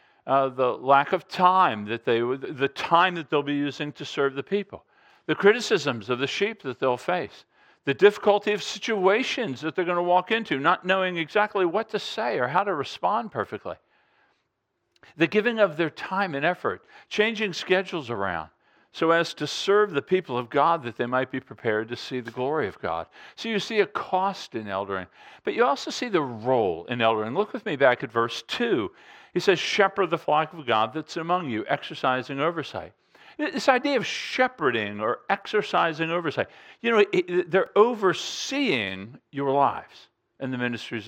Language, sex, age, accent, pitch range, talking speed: English, male, 50-69, American, 130-200 Hz, 185 wpm